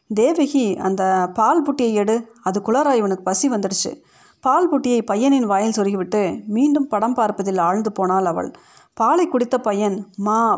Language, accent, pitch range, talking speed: Tamil, native, 195-245 Hz, 135 wpm